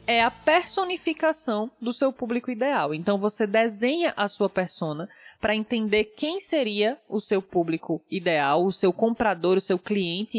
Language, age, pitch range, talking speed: Portuguese, 20-39, 185-250 Hz, 155 wpm